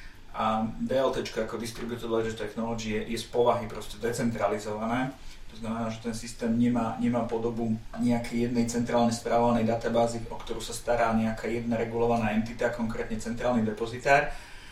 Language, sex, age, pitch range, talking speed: English, male, 40-59, 110-120 Hz, 145 wpm